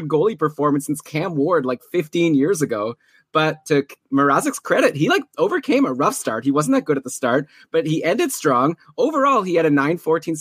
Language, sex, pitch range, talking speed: English, male, 125-160 Hz, 200 wpm